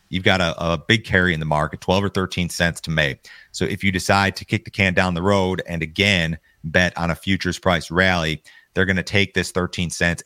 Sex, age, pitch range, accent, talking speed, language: male, 40-59, 85-95 Hz, American, 240 wpm, English